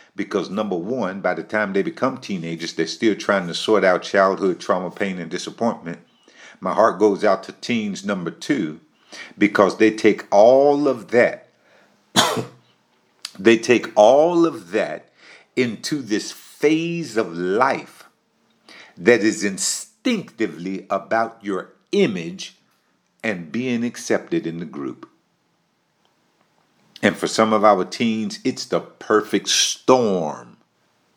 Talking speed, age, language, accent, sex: 125 wpm, 50-69, English, American, male